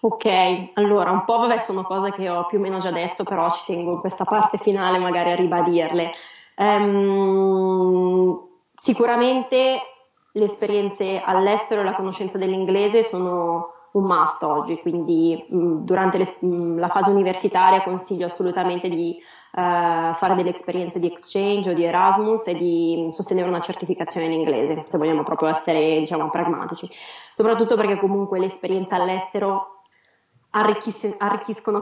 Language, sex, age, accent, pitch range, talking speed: Italian, female, 20-39, native, 175-205 Hz, 145 wpm